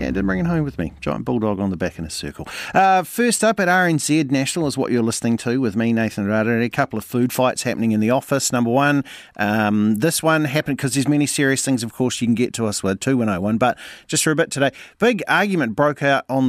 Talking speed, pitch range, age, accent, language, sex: 270 wpm, 115-170 Hz, 40-59, Australian, English, male